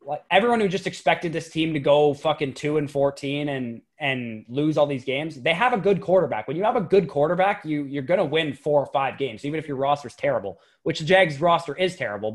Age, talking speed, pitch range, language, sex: 20-39, 250 wpm, 135-165 Hz, English, male